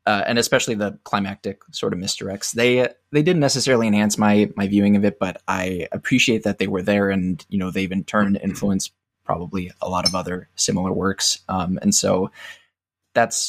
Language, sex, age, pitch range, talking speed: English, male, 20-39, 95-110 Hz, 190 wpm